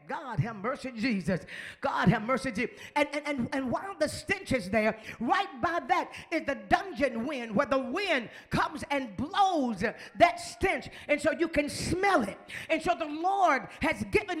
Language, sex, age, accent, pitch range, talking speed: English, female, 40-59, American, 290-370 Hz, 185 wpm